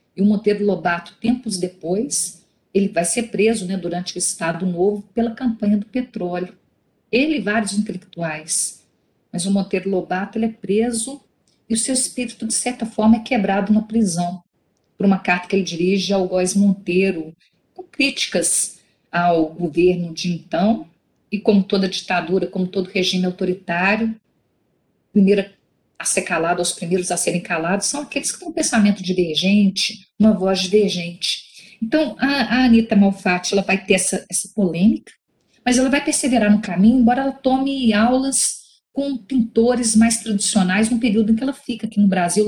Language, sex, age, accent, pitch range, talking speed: Portuguese, female, 50-69, Brazilian, 185-230 Hz, 165 wpm